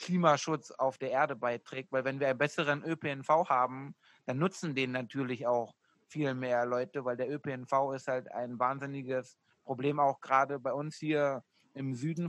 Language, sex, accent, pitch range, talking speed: German, male, German, 130-150 Hz, 170 wpm